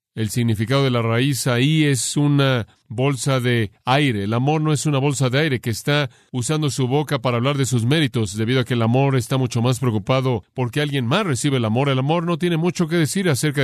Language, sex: Spanish, male